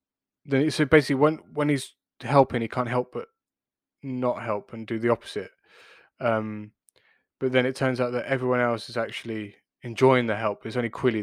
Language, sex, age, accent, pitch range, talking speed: English, male, 20-39, British, 110-130 Hz, 180 wpm